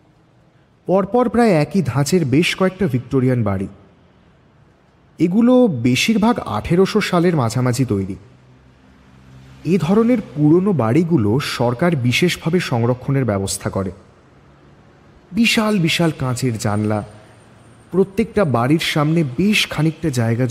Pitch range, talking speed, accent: 100-160 Hz, 100 wpm, Indian